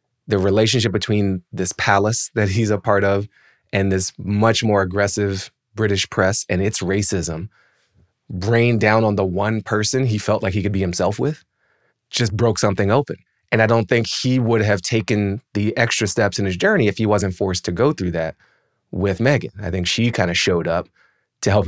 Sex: male